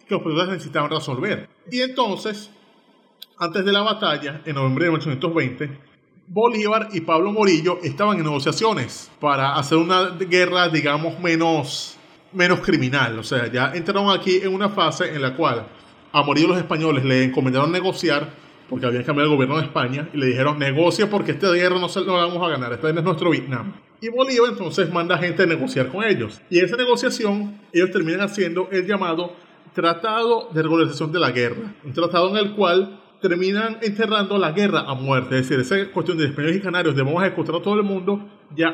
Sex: male